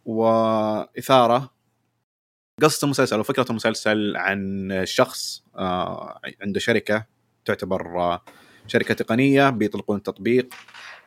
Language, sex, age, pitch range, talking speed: Arabic, male, 30-49, 105-135 Hz, 75 wpm